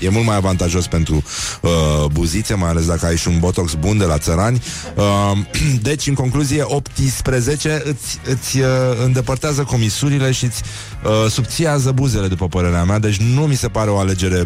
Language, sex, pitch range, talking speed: Romanian, male, 95-125 Hz, 160 wpm